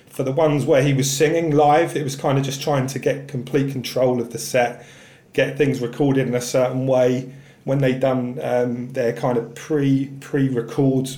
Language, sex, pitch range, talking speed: English, male, 125-145 Hz, 205 wpm